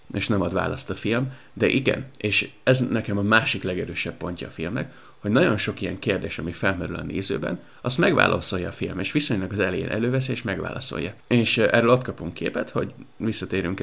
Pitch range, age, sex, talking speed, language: 95-125 Hz, 30-49, male, 190 wpm, Hungarian